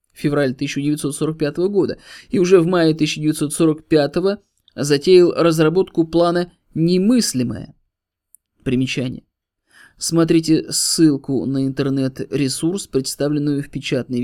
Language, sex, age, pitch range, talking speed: Russian, male, 20-39, 130-170 Hz, 85 wpm